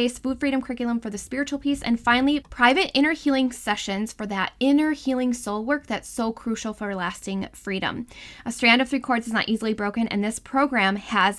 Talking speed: 200 wpm